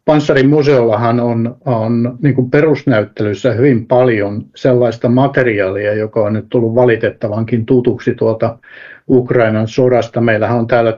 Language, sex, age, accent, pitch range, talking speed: Finnish, male, 60-79, native, 115-135 Hz, 110 wpm